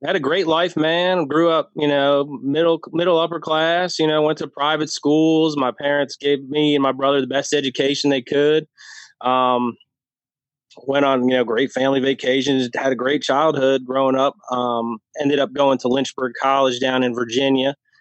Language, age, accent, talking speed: English, 20-39, American, 185 wpm